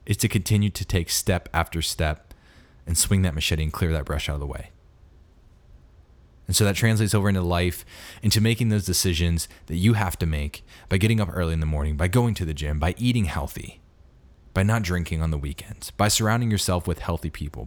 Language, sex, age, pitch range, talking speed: English, male, 20-39, 80-100 Hz, 215 wpm